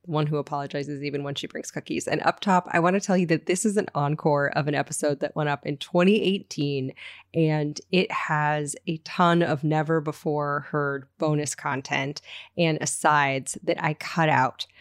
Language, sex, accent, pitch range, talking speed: English, female, American, 145-175 Hz, 185 wpm